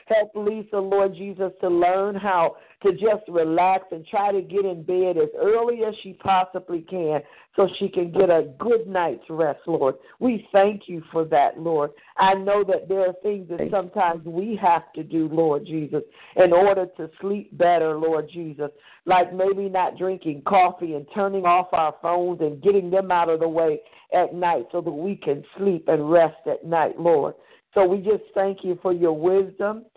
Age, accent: 50-69, American